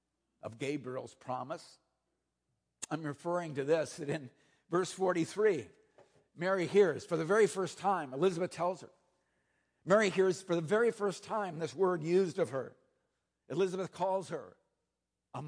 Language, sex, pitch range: English, male, 160-215 Hz